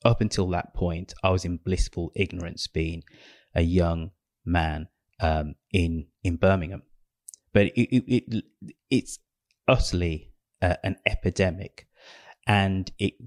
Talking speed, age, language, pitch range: 125 wpm, 30-49, English, 85-95 Hz